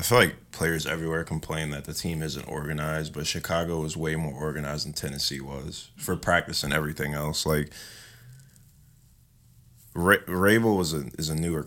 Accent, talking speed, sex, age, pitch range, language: American, 165 wpm, male, 20-39, 80-90 Hz, English